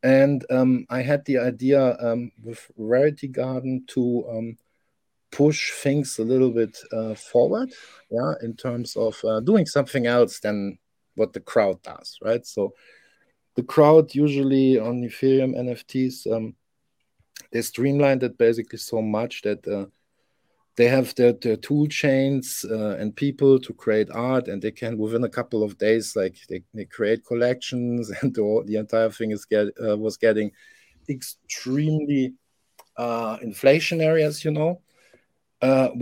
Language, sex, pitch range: English, male, 115-135 Hz